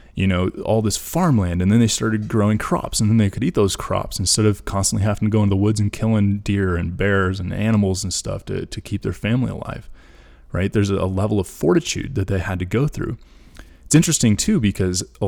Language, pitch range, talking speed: English, 90-120 Hz, 230 wpm